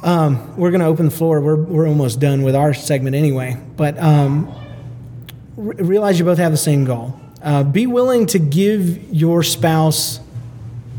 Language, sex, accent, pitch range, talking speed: English, male, American, 140-180 Hz, 175 wpm